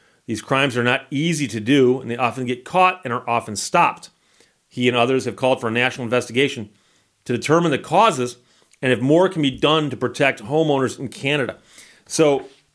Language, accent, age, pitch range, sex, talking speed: English, American, 40-59, 125-160 Hz, male, 195 wpm